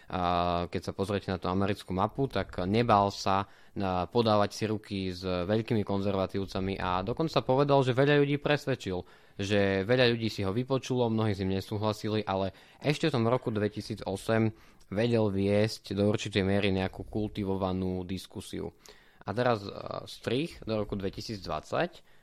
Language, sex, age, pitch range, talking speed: Slovak, male, 20-39, 95-115 Hz, 145 wpm